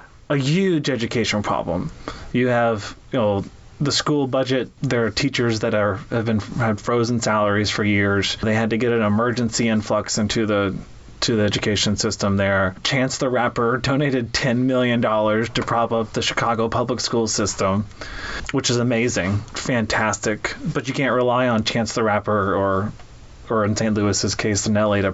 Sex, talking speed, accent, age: male, 170 wpm, American, 30-49